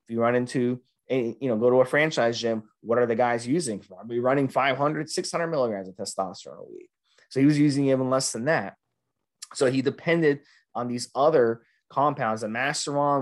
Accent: American